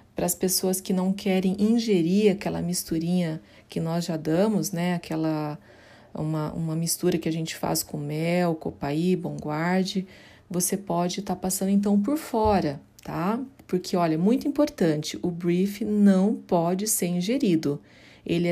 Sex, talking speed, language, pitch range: female, 145 wpm, Portuguese, 170-205 Hz